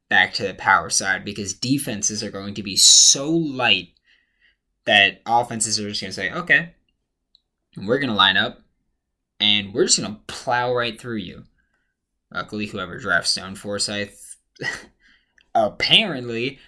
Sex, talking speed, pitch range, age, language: male, 150 wpm, 100-135 Hz, 20-39, English